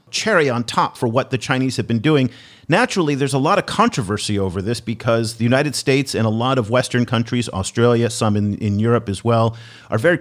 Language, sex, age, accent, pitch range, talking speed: English, male, 40-59, American, 110-140 Hz, 215 wpm